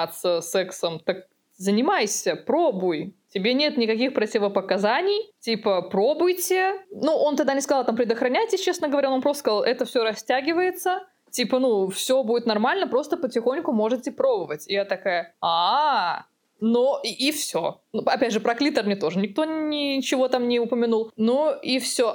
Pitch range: 210-280 Hz